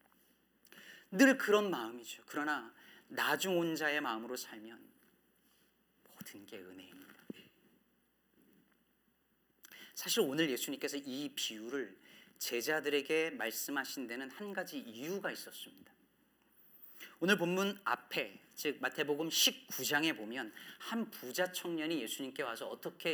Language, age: Korean, 40-59